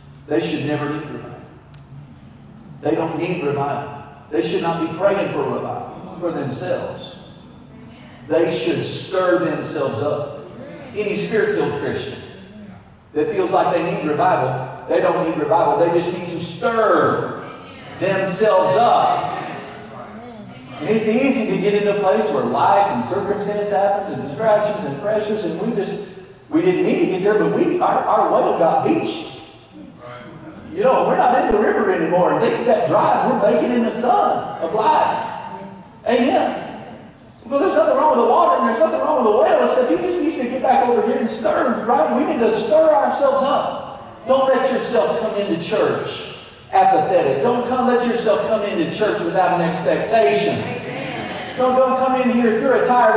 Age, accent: 50-69, American